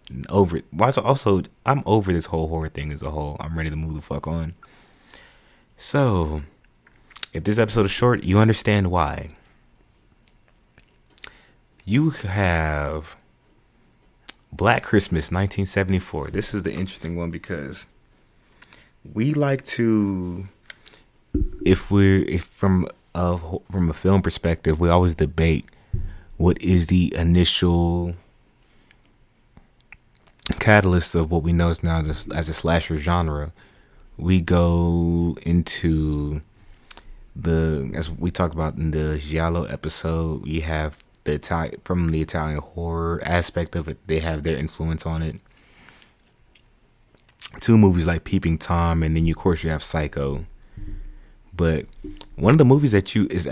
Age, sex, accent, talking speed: 30-49, male, American, 135 wpm